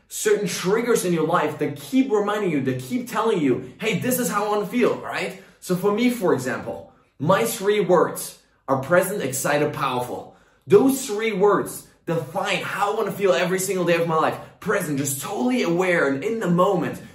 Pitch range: 160-220 Hz